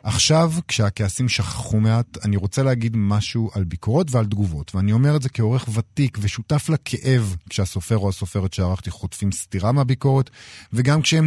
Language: Hebrew